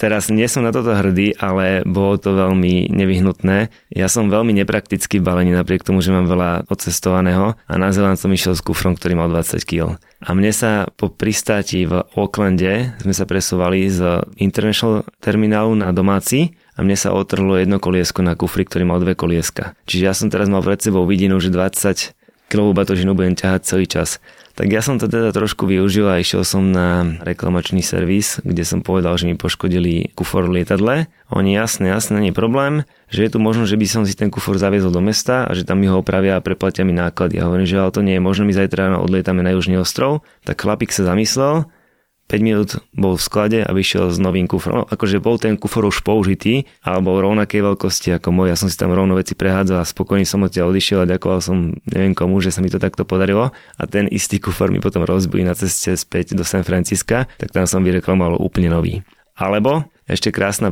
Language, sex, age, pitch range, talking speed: Slovak, male, 20-39, 90-105 Hz, 210 wpm